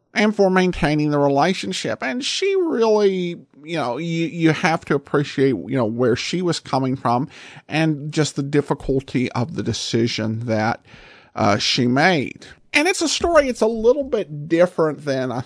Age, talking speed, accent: 50-69, 170 wpm, American